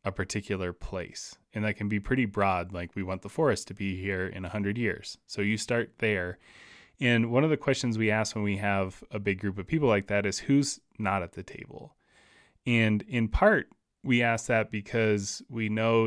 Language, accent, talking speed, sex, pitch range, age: English, American, 210 wpm, male, 100-115 Hz, 20-39